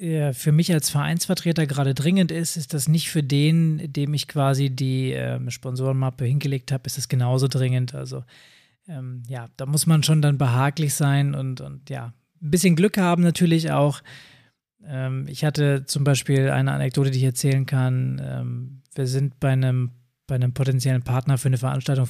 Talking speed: 180 wpm